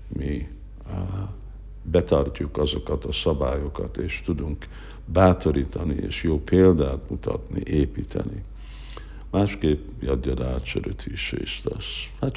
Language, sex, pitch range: Hungarian, male, 70-90 Hz